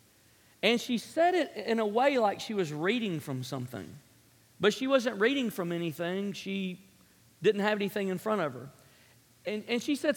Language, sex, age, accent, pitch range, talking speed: English, male, 40-59, American, 180-240 Hz, 185 wpm